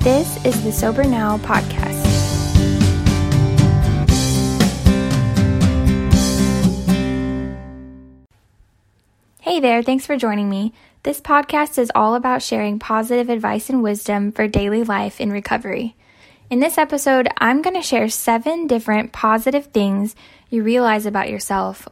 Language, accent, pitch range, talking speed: English, American, 195-250 Hz, 115 wpm